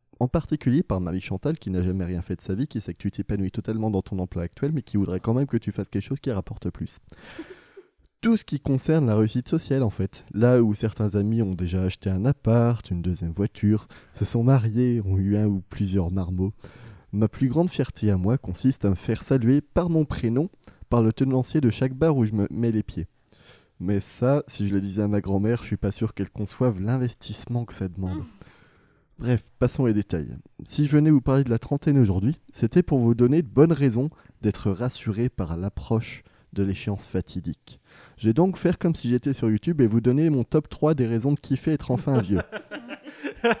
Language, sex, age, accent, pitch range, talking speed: French, male, 20-39, French, 100-135 Hz, 220 wpm